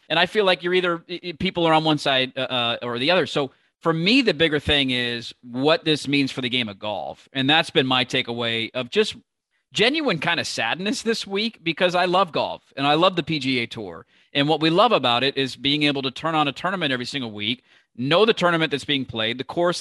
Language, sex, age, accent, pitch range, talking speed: English, male, 40-59, American, 130-160 Hz, 235 wpm